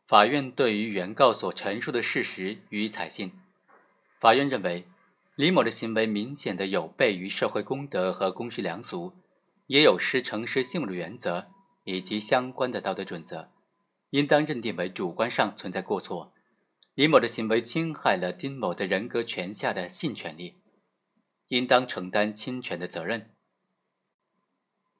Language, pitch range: Chinese, 100-135 Hz